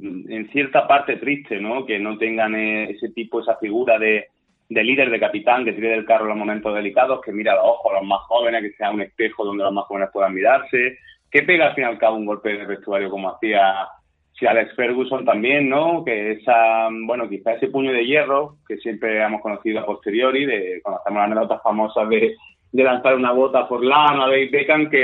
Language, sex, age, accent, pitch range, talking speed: Spanish, male, 30-49, Spanish, 110-130 Hz, 220 wpm